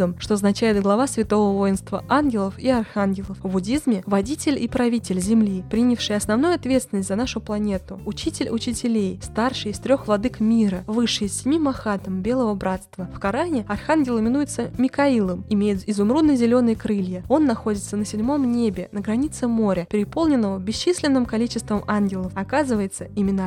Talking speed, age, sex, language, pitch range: 145 wpm, 20-39, female, Russian, 200-250 Hz